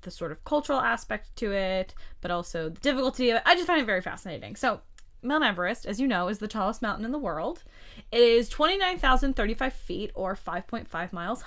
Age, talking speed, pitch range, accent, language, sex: 20-39, 205 wpm, 185-245 Hz, American, English, female